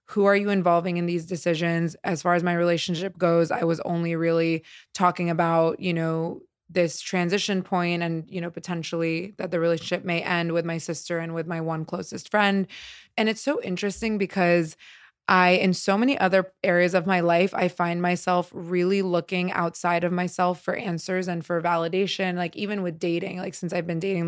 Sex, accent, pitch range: female, American, 170-195 Hz